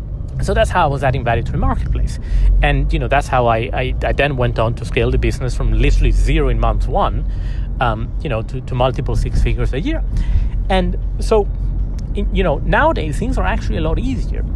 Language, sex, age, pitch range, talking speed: English, male, 30-49, 115-150 Hz, 210 wpm